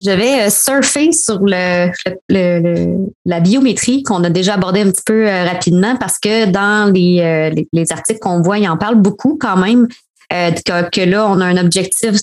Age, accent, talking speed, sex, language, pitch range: 20-39, Canadian, 180 wpm, female, French, 180-215 Hz